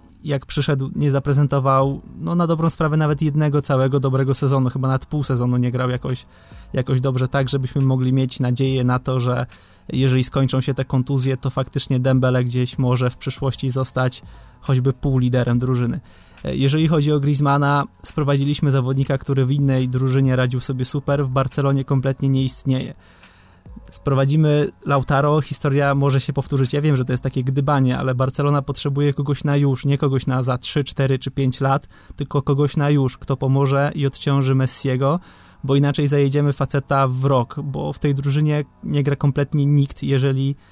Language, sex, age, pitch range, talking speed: Polish, male, 20-39, 130-145 Hz, 170 wpm